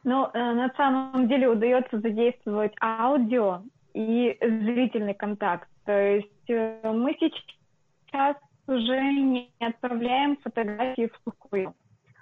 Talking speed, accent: 100 wpm, native